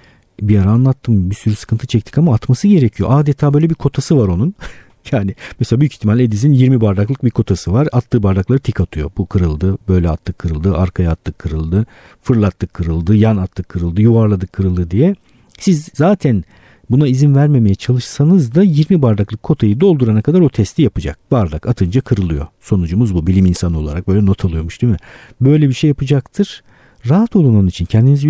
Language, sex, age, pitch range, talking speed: Turkish, male, 50-69, 95-130 Hz, 175 wpm